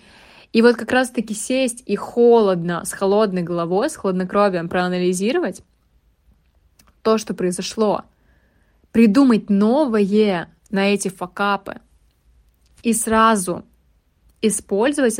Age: 20-39